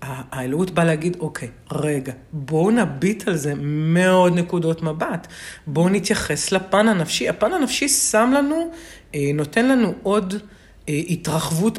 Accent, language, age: native, Hebrew, 40-59